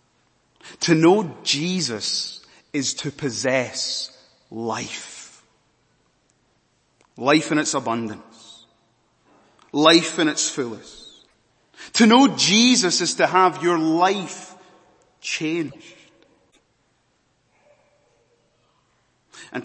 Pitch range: 140-175 Hz